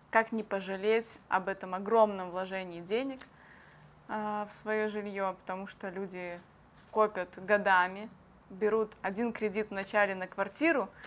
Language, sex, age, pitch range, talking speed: Russian, female, 20-39, 195-230 Hz, 120 wpm